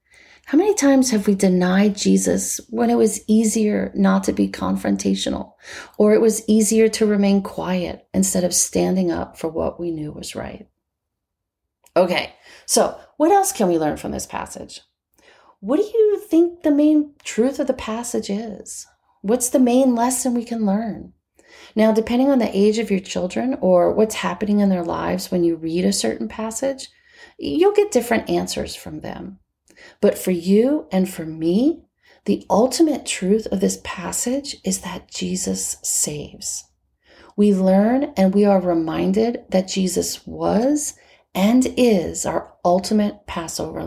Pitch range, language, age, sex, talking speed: 180-245 Hz, English, 30-49, female, 160 wpm